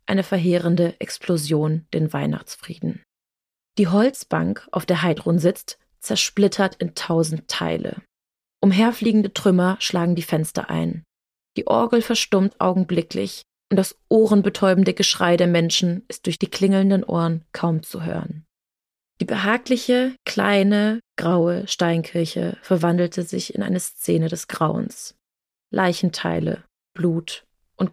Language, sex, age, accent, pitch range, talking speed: German, female, 20-39, German, 165-195 Hz, 115 wpm